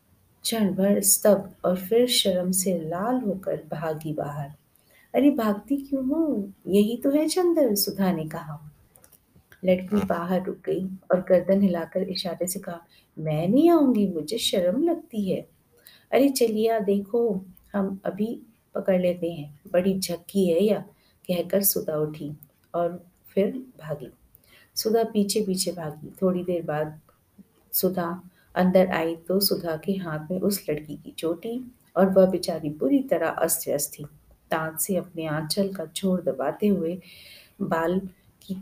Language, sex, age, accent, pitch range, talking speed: Hindi, female, 50-69, native, 165-205 Hz, 145 wpm